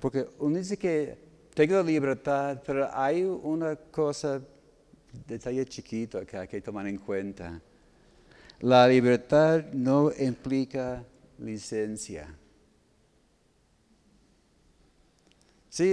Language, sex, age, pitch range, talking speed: Spanish, male, 60-79, 105-145 Hz, 95 wpm